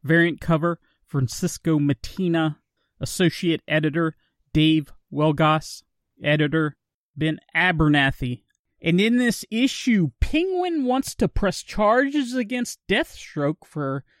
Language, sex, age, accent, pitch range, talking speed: English, male, 30-49, American, 150-200 Hz, 95 wpm